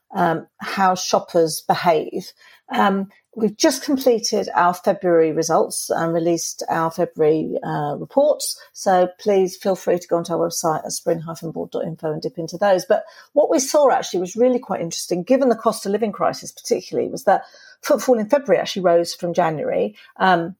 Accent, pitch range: British, 170-245 Hz